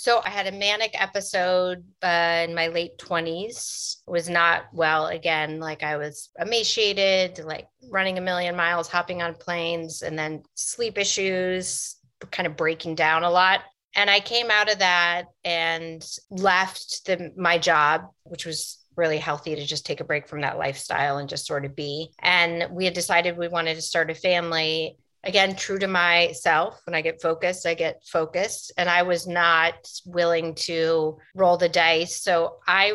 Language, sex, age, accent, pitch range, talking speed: English, female, 30-49, American, 160-180 Hz, 175 wpm